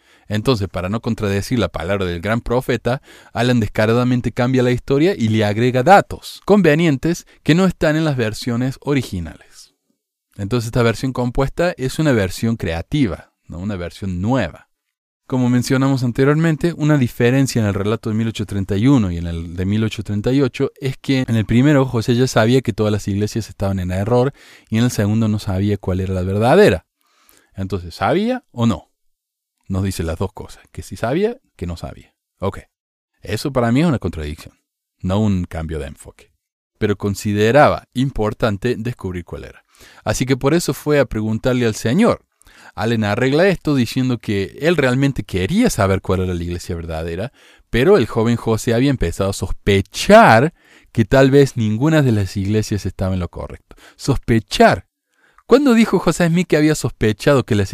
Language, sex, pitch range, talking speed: Spanish, male, 100-130 Hz, 170 wpm